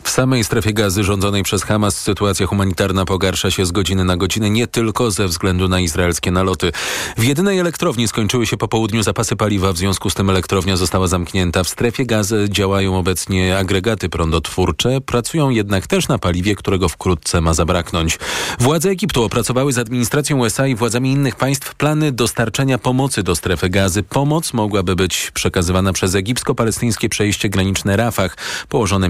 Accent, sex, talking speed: native, male, 165 wpm